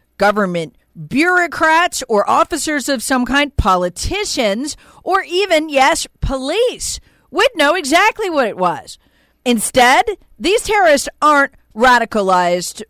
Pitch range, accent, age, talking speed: 215-330 Hz, American, 40-59, 105 wpm